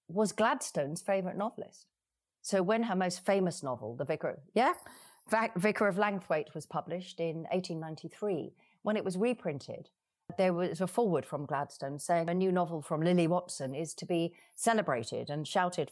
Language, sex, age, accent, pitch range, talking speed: English, female, 40-59, British, 155-200 Hz, 165 wpm